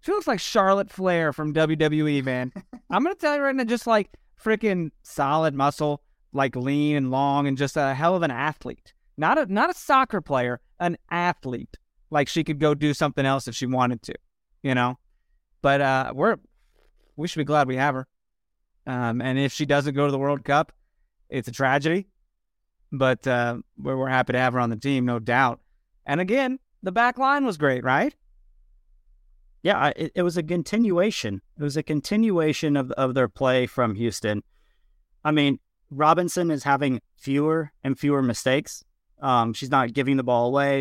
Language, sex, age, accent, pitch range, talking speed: English, male, 20-39, American, 125-155 Hz, 185 wpm